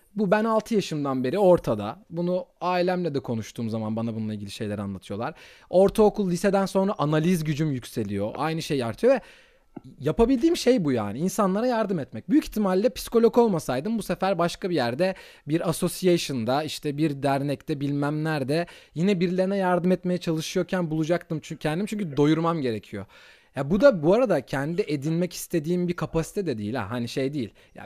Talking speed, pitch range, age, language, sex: 165 wpm, 140-195 Hz, 30-49, Turkish, male